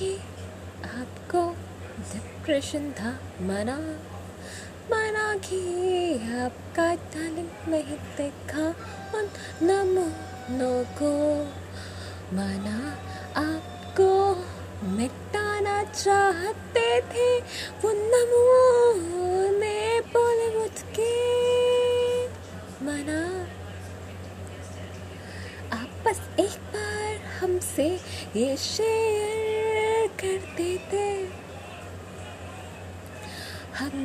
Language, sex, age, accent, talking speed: Hindi, female, 20-39, native, 55 wpm